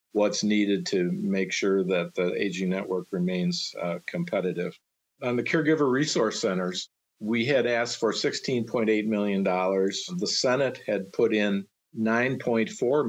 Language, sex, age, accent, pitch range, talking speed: English, male, 50-69, American, 95-115 Hz, 135 wpm